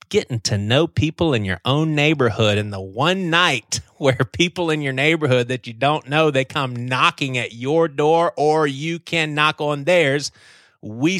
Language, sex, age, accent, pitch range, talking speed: English, male, 30-49, American, 105-145 Hz, 180 wpm